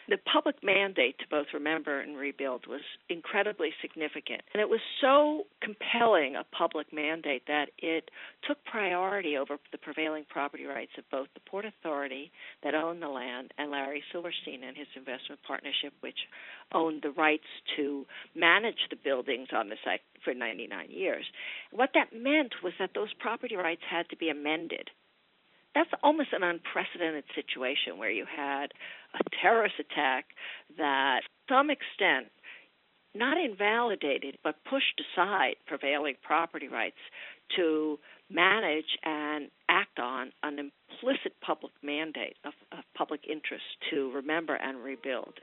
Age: 50-69